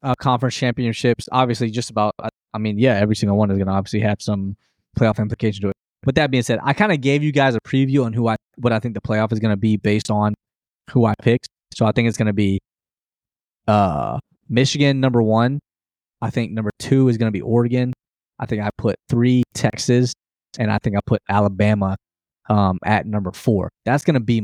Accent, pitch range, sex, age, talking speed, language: American, 105-125 Hz, male, 20-39, 225 wpm, English